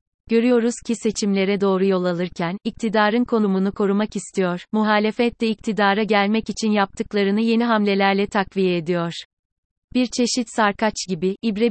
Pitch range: 190-225 Hz